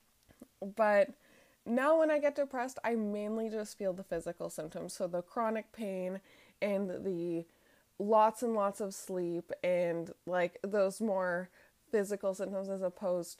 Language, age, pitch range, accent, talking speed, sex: English, 20-39, 180-220 Hz, American, 145 wpm, female